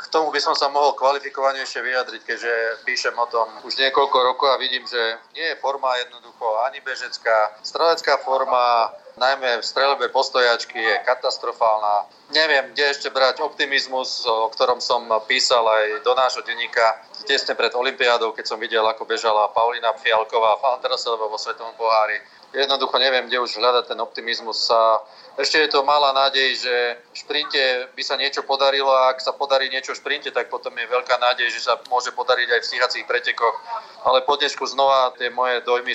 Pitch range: 110-135 Hz